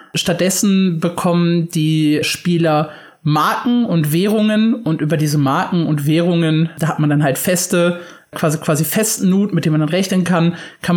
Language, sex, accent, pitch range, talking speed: German, male, German, 160-195 Hz, 165 wpm